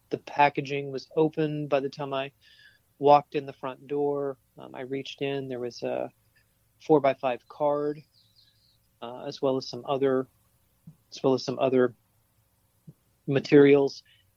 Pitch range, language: 110-135 Hz, English